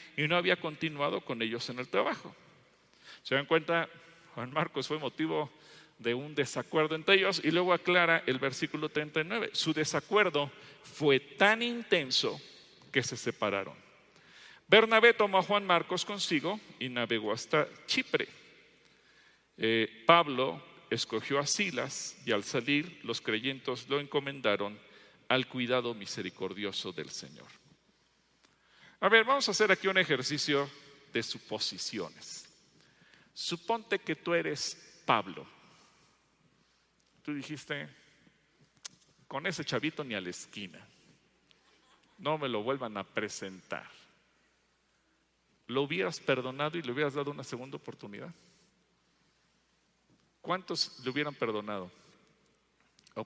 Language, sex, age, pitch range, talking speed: English, male, 40-59, 125-170 Hz, 120 wpm